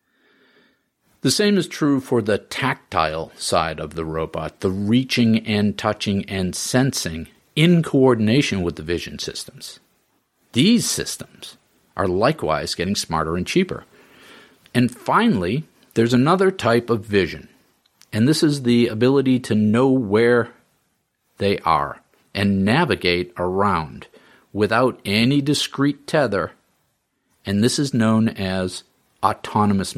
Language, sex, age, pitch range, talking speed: English, male, 50-69, 95-130 Hz, 120 wpm